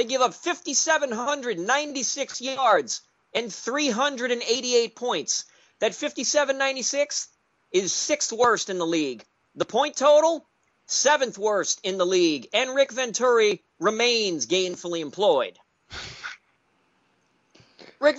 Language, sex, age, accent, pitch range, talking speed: English, male, 40-59, American, 210-290 Hz, 100 wpm